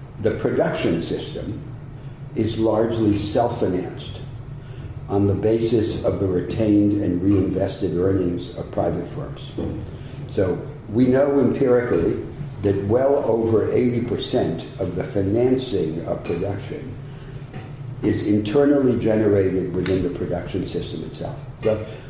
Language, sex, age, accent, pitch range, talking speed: English, male, 60-79, American, 105-135 Hz, 110 wpm